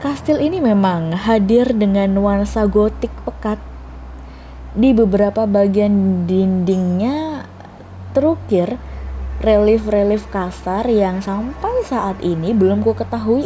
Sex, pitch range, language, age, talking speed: female, 160-220 Hz, Indonesian, 20-39, 100 wpm